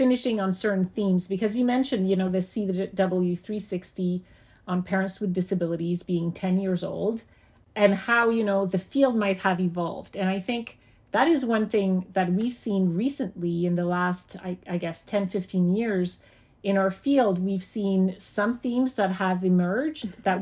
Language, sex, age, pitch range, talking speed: English, female, 40-59, 180-210 Hz, 175 wpm